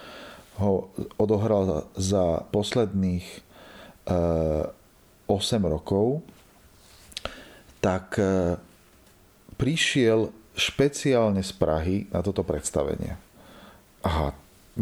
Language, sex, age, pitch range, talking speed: Slovak, male, 40-59, 90-100 Hz, 70 wpm